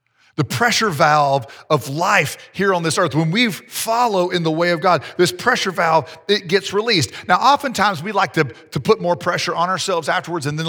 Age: 40-59